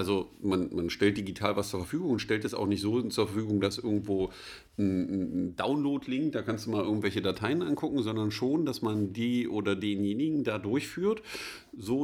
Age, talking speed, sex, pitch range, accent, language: 50-69, 185 wpm, male, 100-125 Hz, German, German